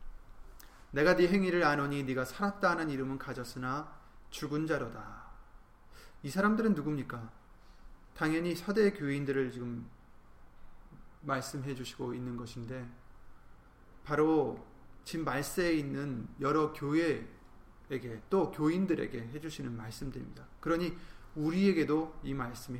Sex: male